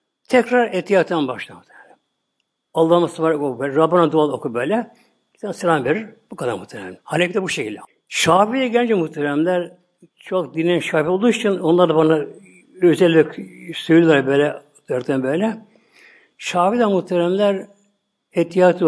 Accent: native